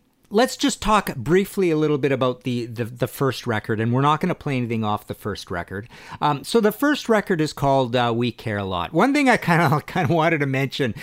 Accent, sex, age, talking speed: American, male, 50-69, 250 wpm